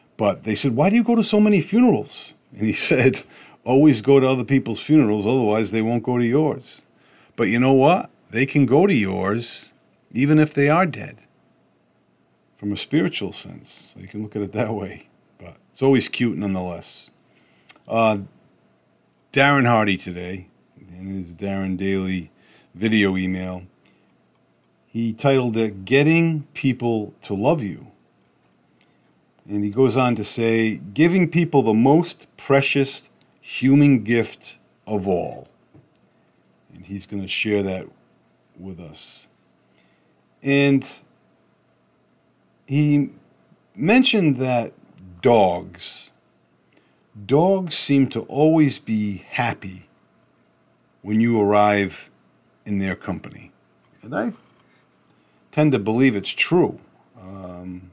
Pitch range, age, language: 95-140 Hz, 40-59, English